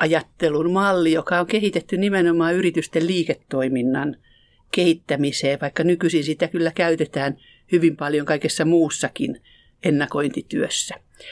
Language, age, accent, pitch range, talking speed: Finnish, 60-79, native, 145-180 Hz, 100 wpm